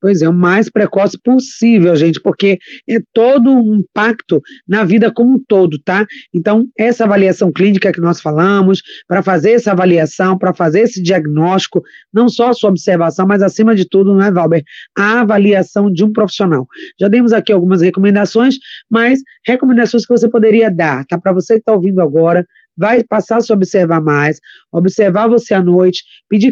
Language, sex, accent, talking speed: Portuguese, female, Brazilian, 175 wpm